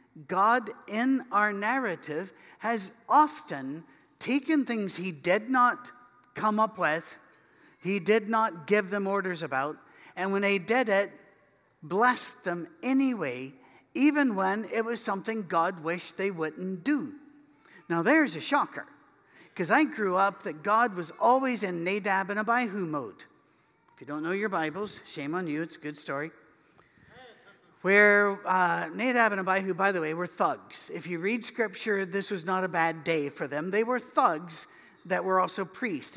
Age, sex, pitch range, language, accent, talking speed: 50-69, male, 165-220 Hz, English, American, 165 wpm